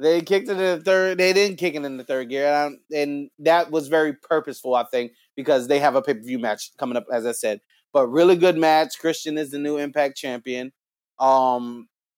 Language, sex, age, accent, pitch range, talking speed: English, male, 30-49, American, 135-185 Hz, 225 wpm